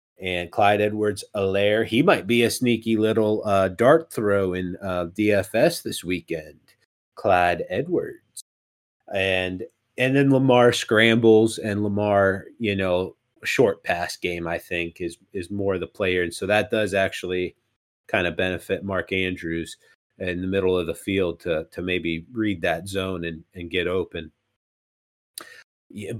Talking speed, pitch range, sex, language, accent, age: 150 wpm, 90-115 Hz, male, English, American, 30-49